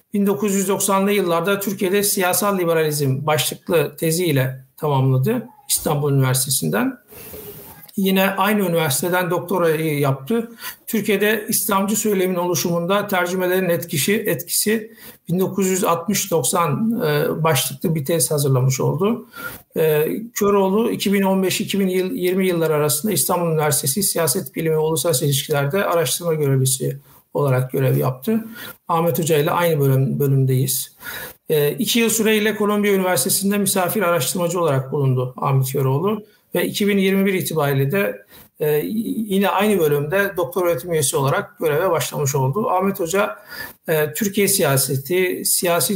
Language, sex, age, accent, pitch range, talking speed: Turkish, male, 60-79, native, 150-200 Hz, 105 wpm